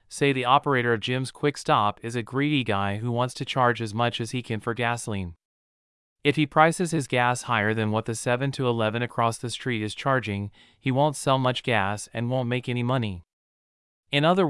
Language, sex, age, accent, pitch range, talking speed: English, male, 30-49, American, 110-130 Hz, 210 wpm